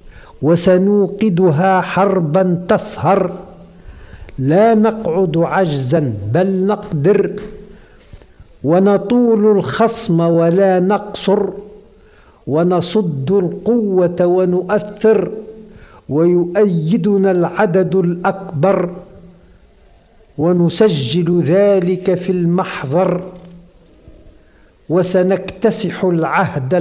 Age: 50-69